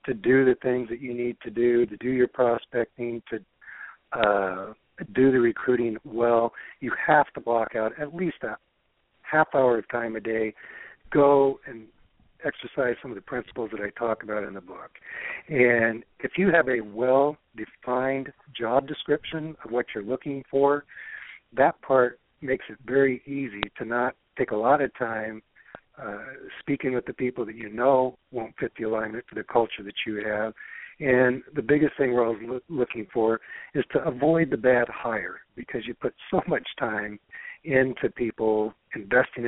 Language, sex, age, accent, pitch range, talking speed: English, male, 60-79, American, 115-130 Hz, 175 wpm